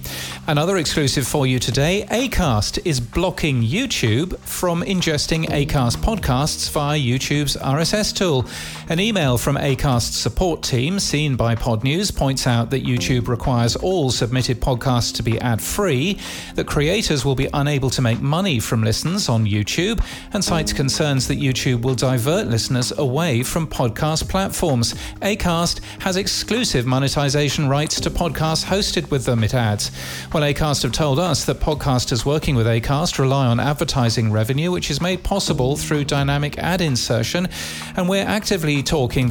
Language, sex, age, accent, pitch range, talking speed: English, male, 40-59, British, 120-165 Hz, 150 wpm